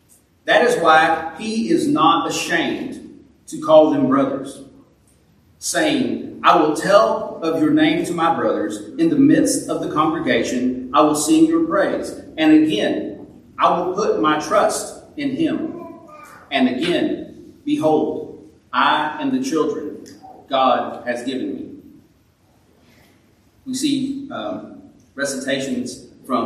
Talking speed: 130 wpm